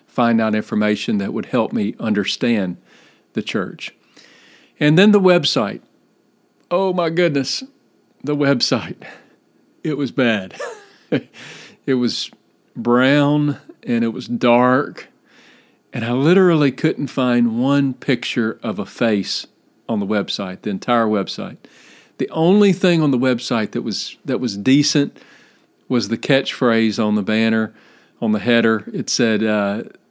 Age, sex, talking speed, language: 40-59, male, 135 wpm, English